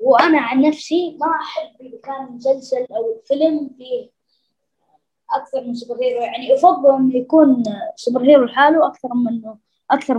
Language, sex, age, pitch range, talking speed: Arabic, female, 20-39, 220-280 Hz, 155 wpm